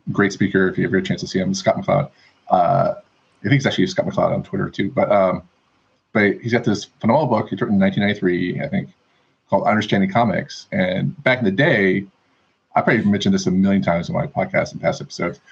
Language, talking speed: English, 225 wpm